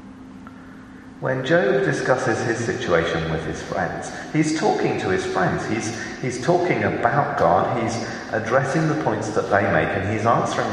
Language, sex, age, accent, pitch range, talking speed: English, male, 40-59, British, 95-135 Hz, 155 wpm